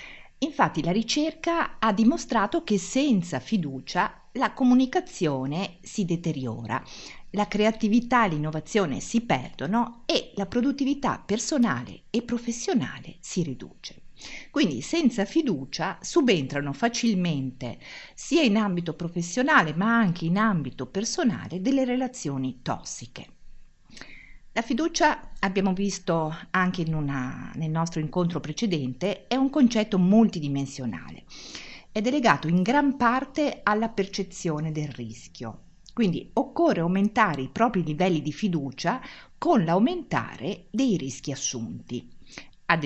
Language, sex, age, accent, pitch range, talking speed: Italian, female, 50-69, native, 150-230 Hz, 115 wpm